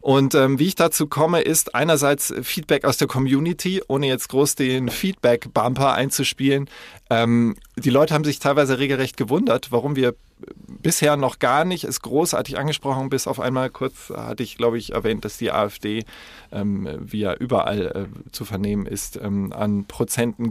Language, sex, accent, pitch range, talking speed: German, male, German, 115-140 Hz, 170 wpm